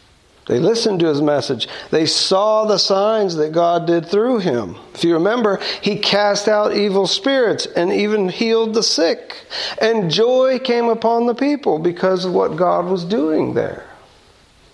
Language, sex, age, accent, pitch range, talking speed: English, male, 50-69, American, 155-220 Hz, 165 wpm